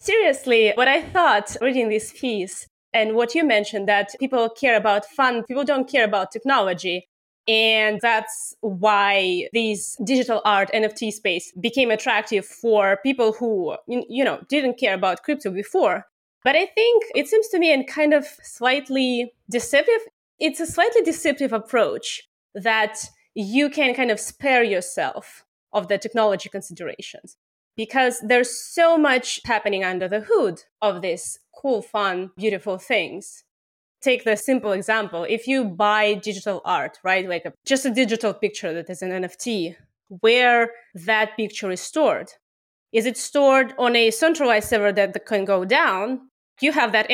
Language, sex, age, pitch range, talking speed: English, female, 20-39, 205-265 Hz, 155 wpm